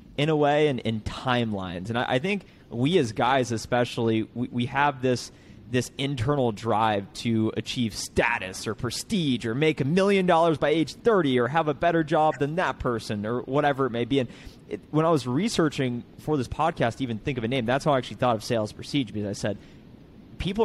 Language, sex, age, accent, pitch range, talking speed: English, male, 30-49, American, 110-140 Hz, 210 wpm